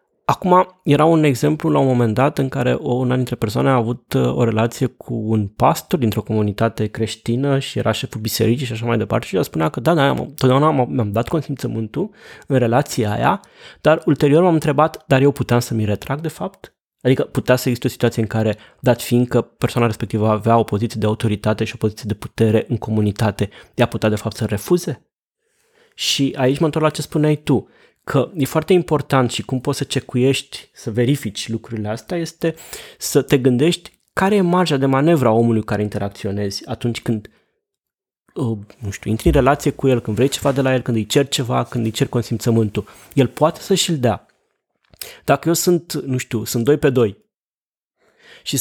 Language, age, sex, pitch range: Romanian, 20-39, male, 115-145 Hz